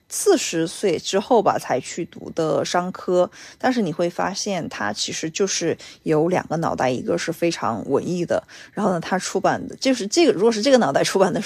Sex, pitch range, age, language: female, 170-225 Hz, 20-39, Chinese